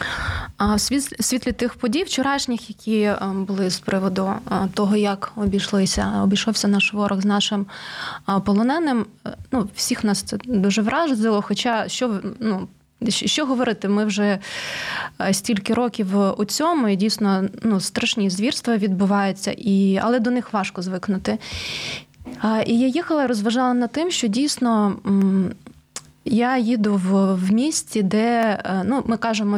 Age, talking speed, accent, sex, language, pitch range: 20-39, 130 wpm, native, female, Ukrainian, 200-240 Hz